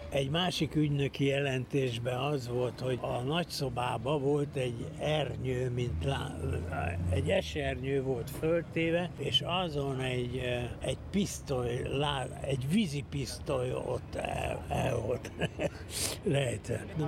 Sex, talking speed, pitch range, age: male, 115 wpm, 115-145 Hz, 60-79